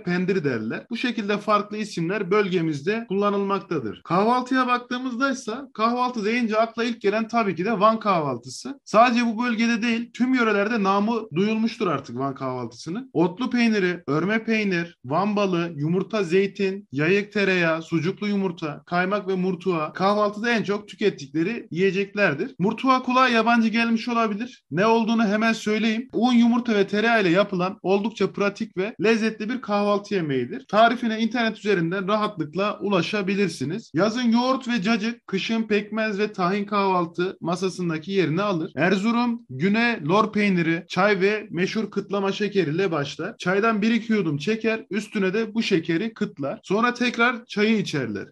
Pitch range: 185-225 Hz